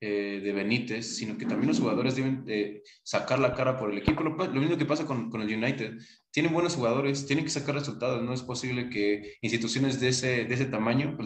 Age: 20-39